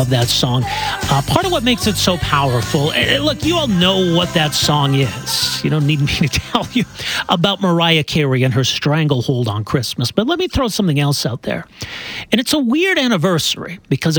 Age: 50-69